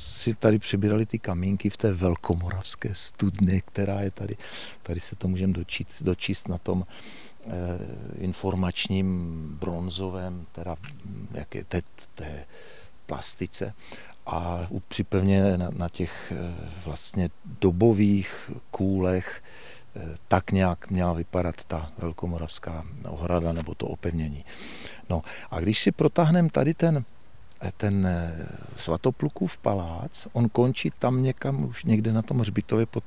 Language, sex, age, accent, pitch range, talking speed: Czech, male, 50-69, native, 90-110 Hz, 120 wpm